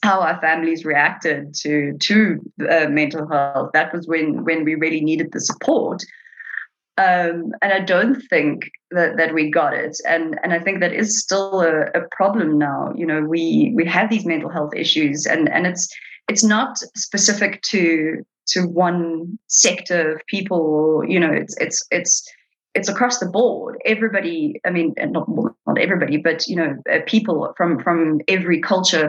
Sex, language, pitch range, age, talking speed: female, English, 160-215 Hz, 30-49, 175 wpm